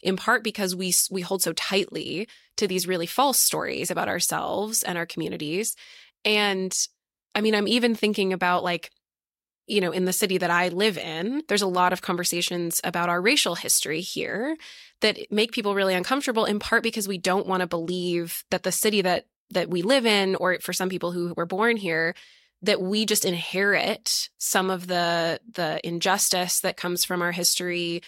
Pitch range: 175-215 Hz